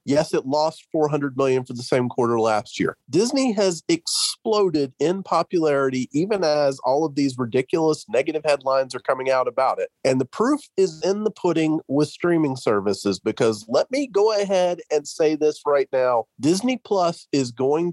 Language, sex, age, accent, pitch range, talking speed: English, male, 40-59, American, 140-195 Hz, 175 wpm